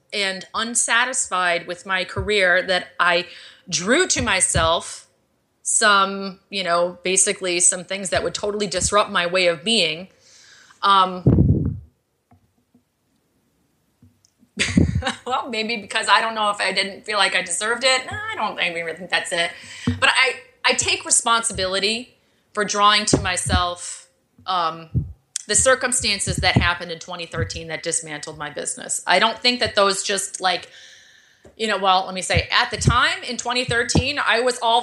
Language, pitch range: English, 185-255 Hz